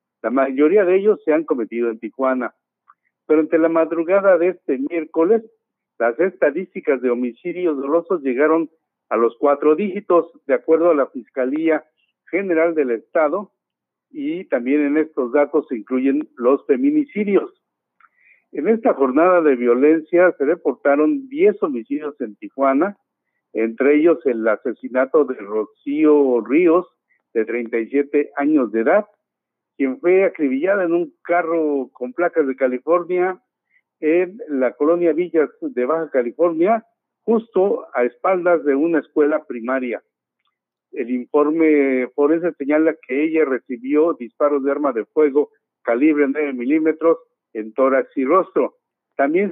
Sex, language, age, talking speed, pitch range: male, Spanish, 50-69, 135 wpm, 130-175 Hz